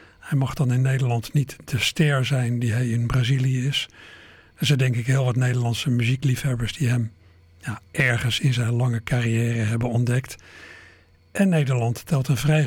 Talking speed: 170 wpm